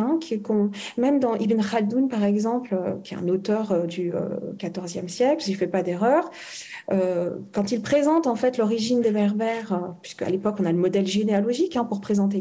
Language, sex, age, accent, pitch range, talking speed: French, female, 40-59, French, 200-250 Hz, 210 wpm